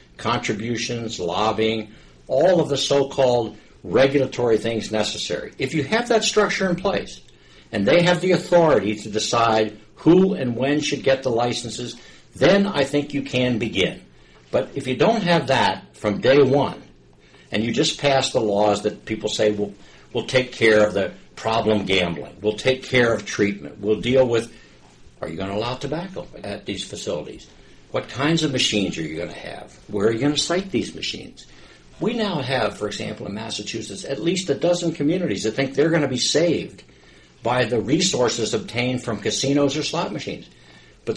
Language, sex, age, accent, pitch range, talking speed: English, male, 60-79, American, 105-145 Hz, 180 wpm